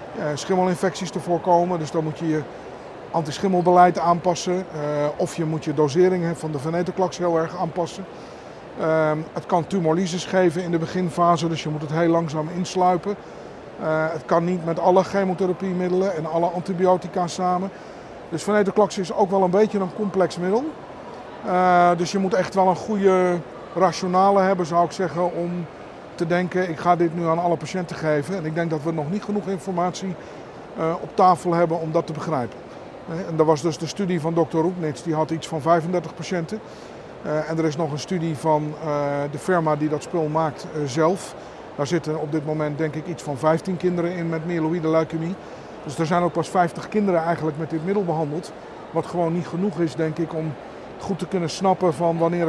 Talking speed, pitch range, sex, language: 185 wpm, 160-185 Hz, male, Dutch